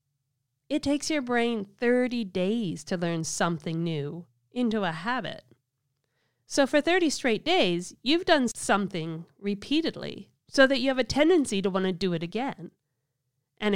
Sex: female